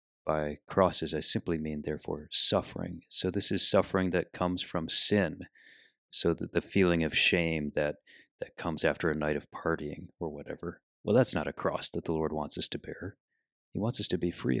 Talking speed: 200 wpm